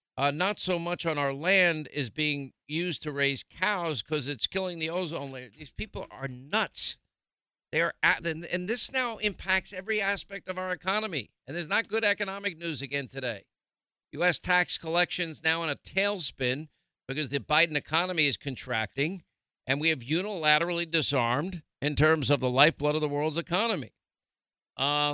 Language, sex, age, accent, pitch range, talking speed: English, male, 50-69, American, 135-180 Hz, 170 wpm